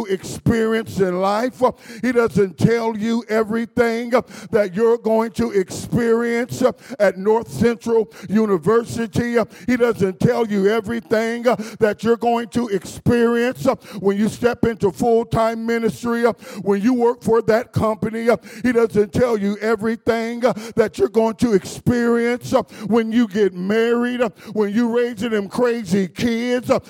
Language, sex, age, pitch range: English, male, 50-69, 210-245 Hz